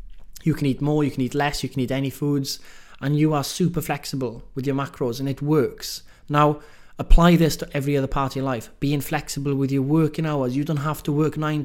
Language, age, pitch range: English, 20-39, 125-150 Hz